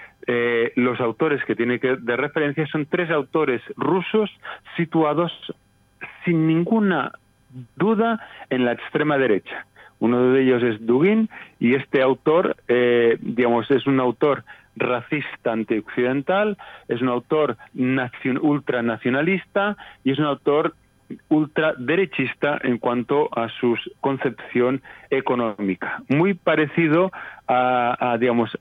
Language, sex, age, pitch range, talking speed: Spanish, male, 40-59, 120-155 Hz, 115 wpm